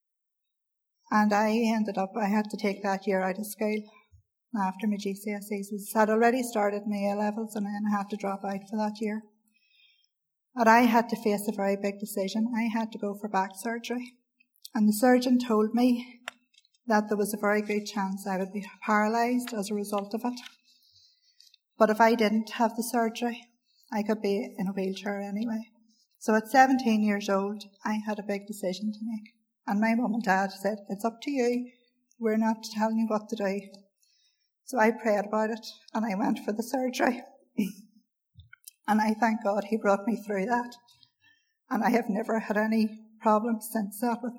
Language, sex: English, female